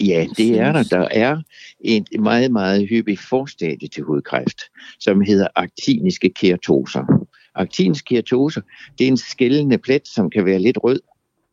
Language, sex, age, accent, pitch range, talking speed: Danish, male, 60-79, native, 100-135 Hz, 145 wpm